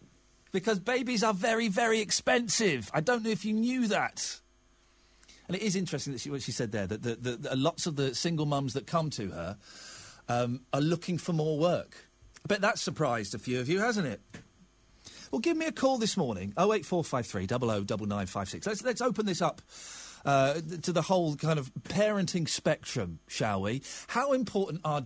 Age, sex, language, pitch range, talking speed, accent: 40-59, male, English, 135-205 Hz, 190 wpm, British